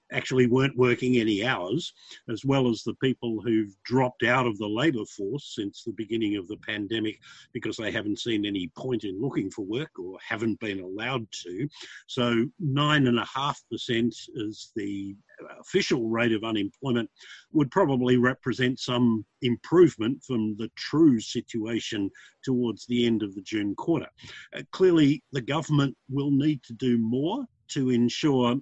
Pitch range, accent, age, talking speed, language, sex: 110-130 Hz, Australian, 50-69, 155 wpm, English, male